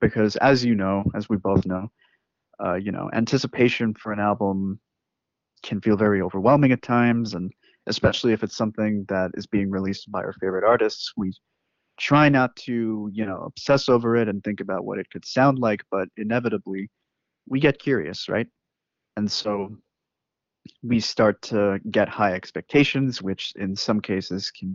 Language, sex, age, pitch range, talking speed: English, male, 30-49, 100-120 Hz, 170 wpm